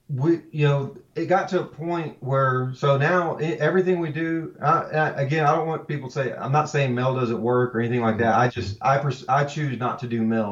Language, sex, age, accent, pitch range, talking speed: English, male, 30-49, American, 110-135 Hz, 240 wpm